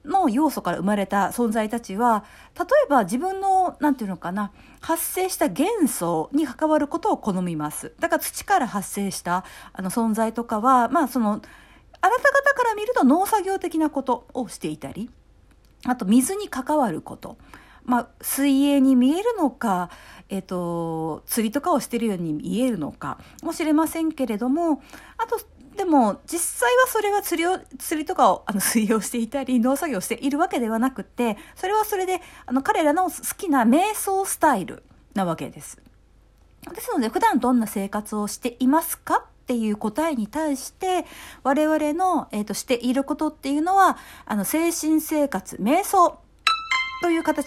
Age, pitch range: 50-69, 225-335 Hz